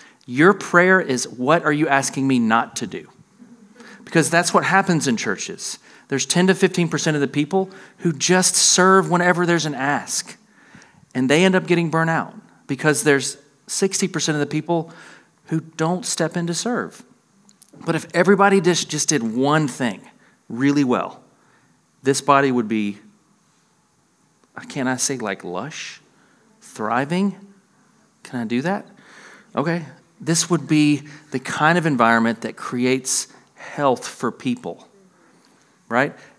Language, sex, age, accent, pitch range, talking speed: English, male, 40-59, American, 130-180 Hz, 145 wpm